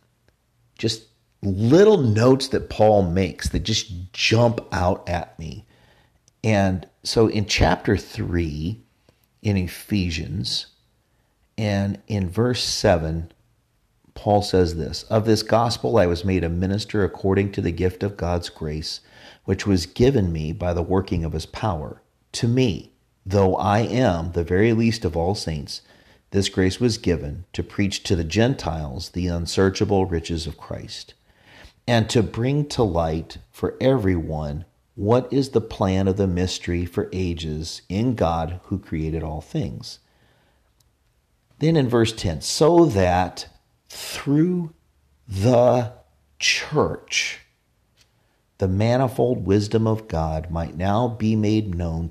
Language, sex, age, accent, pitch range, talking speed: English, male, 40-59, American, 85-115 Hz, 135 wpm